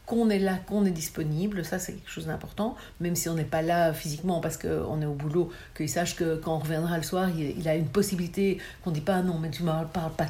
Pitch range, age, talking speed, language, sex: 160-200 Hz, 60-79, 270 wpm, French, female